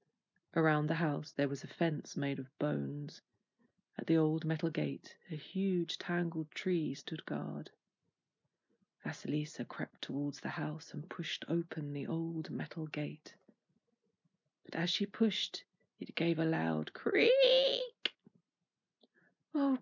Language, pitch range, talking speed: English, 160-210 Hz, 130 wpm